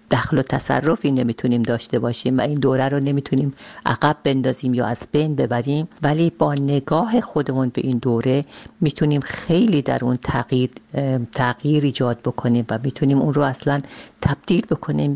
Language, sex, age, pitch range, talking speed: Persian, female, 50-69, 125-145 Hz, 150 wpm